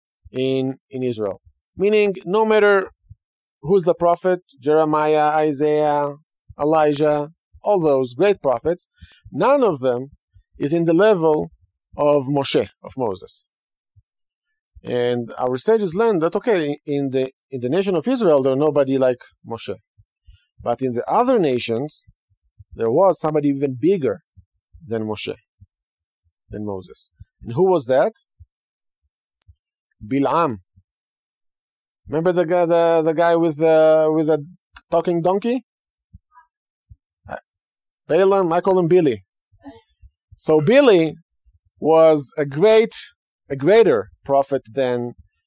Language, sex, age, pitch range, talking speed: English, male, 40-59, 110-170 Hz, 115 wpm